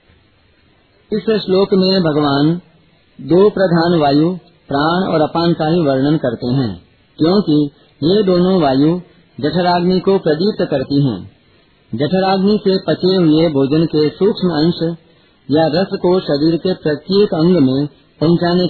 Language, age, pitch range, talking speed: Hindi, 50-69, 140-180 Hz, 130 wpm